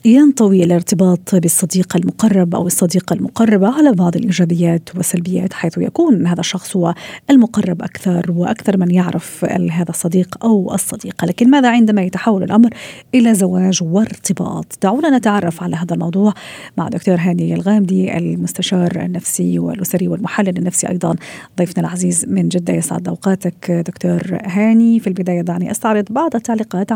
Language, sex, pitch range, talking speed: Arabic, female, 175-210 Hz, 140 wpm